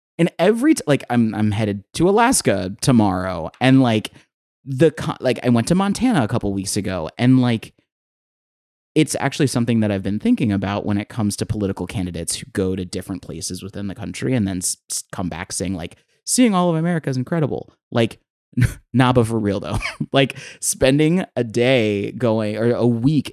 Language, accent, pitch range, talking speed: English, American, 100-140 Hz, 190 wpm